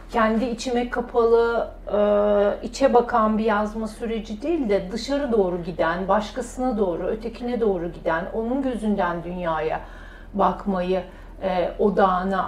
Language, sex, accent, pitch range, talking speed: Turkish, female, native, 195-255 Hz, 110 wpm